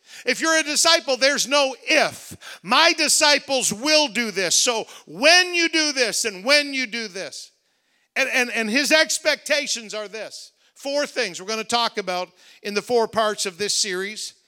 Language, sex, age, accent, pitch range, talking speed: English, male, 50-69, American, 205-275 Hz, 175 wpm